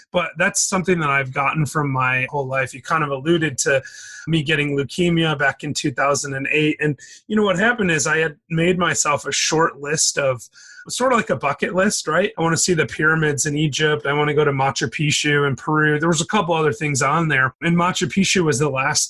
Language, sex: English, male